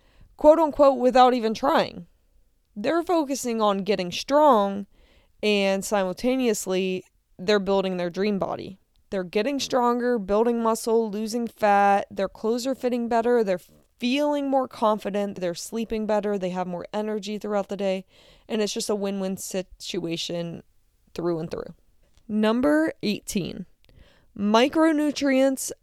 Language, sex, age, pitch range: English, female, 20-39, 190-240 Hz